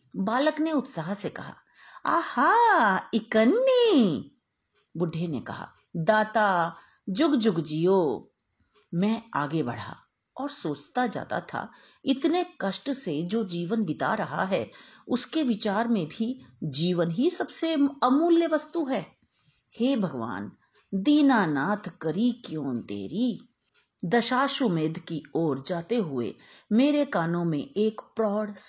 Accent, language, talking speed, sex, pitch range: native, Hindi, 115 wpm, female, 165-250 Hz